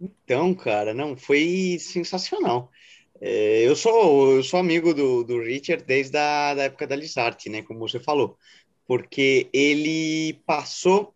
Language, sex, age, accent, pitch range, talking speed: Portuguese, male, 20-39, Brazilian, 125-170 Hz, 140 wpm